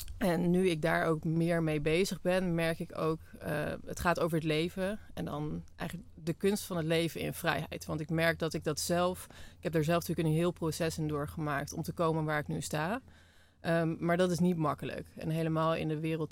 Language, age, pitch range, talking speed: Dutch, 30-49, 155-175 Hz, 230 wpm